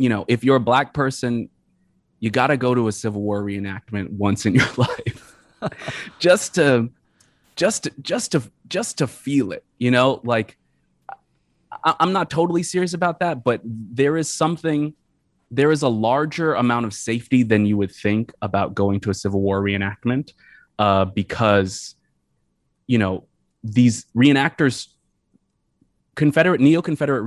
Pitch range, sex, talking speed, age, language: 100-125 Hz, male, 150 wpm, 20-39, English